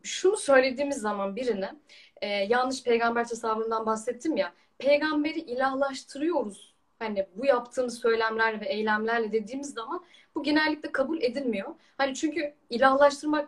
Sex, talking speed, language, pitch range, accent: female, 120 wpm, Turkish, 210-285 Hz, native